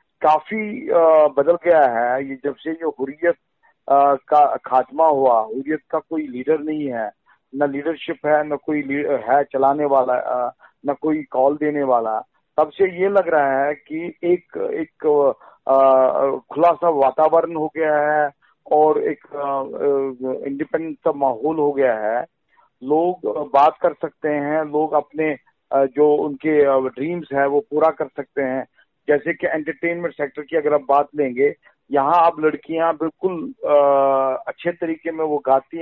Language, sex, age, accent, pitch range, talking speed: Hindi, male, 50-69, native, 140-165 Hz, 145 wpm